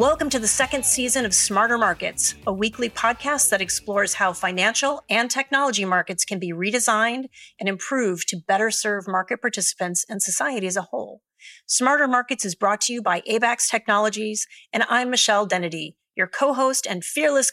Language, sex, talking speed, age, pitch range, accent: English, female, 170 wpm, 30-49, 185-235 Hz, American